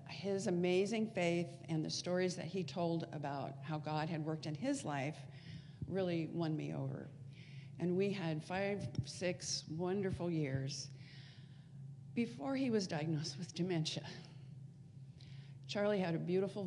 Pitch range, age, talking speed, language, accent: 140-175 Hz, 50-69, 135 wpm, English, American